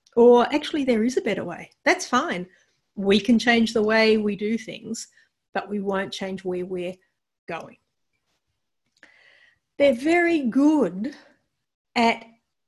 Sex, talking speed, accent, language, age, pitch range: female, 135 wpm, Australian, English, 40-59, 190-250 Hz